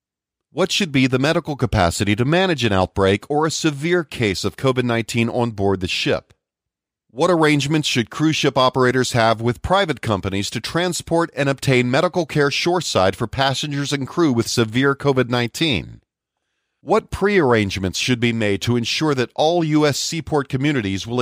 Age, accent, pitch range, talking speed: 40-59, American, 115-155 Hz, 160 wpm